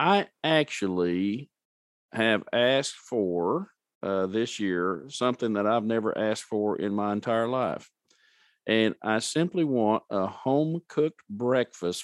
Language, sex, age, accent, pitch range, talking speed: English, male, 50-69, American, 100-130 Hz, 130 wpm